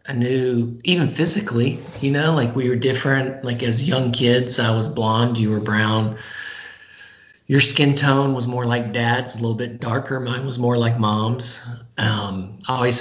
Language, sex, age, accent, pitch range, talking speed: English, male, 40-59, American, 110-130 Hz, 180 wpm